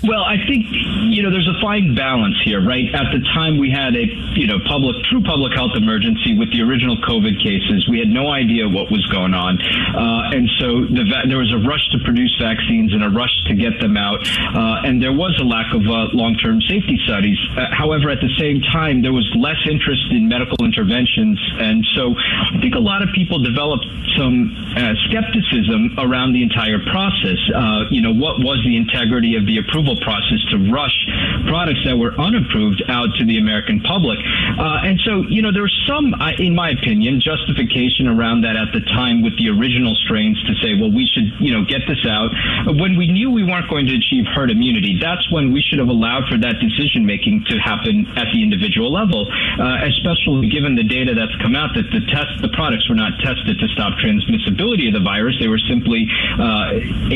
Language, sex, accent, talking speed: English, male, American, 210 wpm